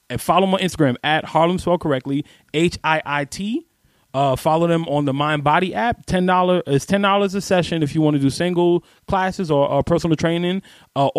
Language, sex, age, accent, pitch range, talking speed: English, male, 20-39, American, 130-170 Hz, 205 wpm